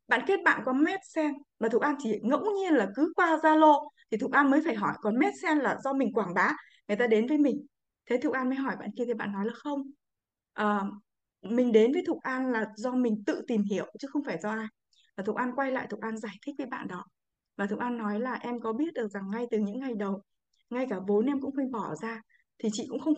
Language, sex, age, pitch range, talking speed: Vietnamese, female, 20-39, 220-295 Hz, 265 wpm